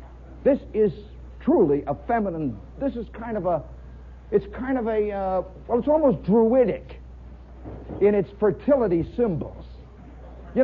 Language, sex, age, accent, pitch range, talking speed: English, male, 50-69, American, 150-215 Hz, 135 wpm